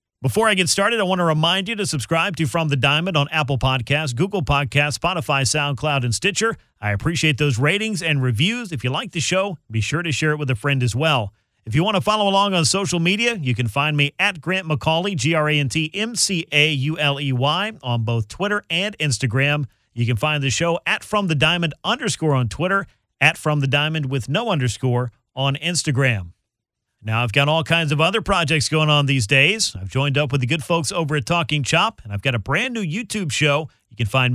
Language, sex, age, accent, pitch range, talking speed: English, male, 40-59, American, 135-175 Hz, 215 wpm